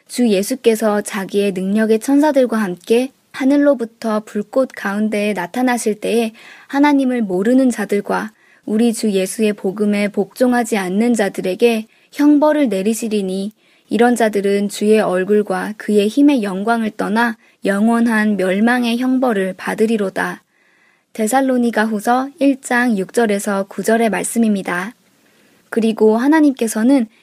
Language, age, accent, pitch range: Korean, 20-39, native, 205-245 Hz